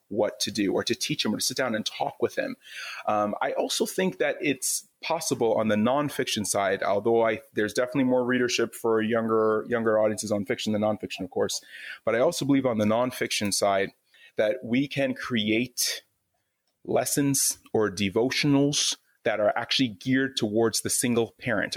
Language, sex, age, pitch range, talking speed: English, male, 30-49, 110-140 Hz, 180 wpm